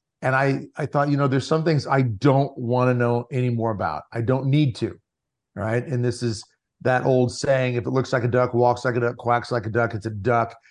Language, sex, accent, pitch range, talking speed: English, male, American, 120-135 Hz, 245 wpm